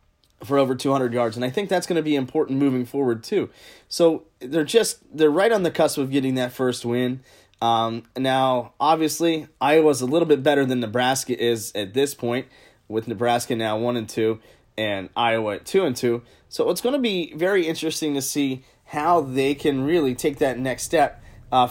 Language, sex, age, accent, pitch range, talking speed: English, male, 20-39, American, 120-155 Hz, 200 wpm